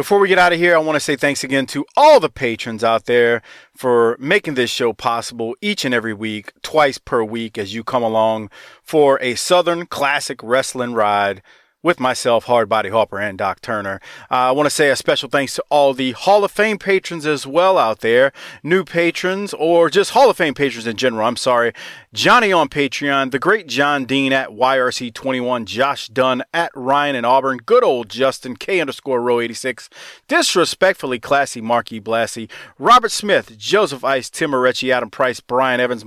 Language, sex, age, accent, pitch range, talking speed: English, male, 30-49, American, 120-165 Hz, 190 wpm